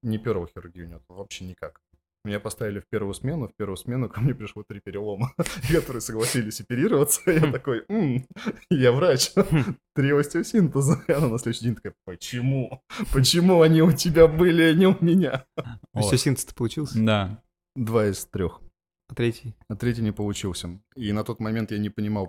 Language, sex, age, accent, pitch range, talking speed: Russian, male, 20-39, native, 95-130 Hz, 160 wpm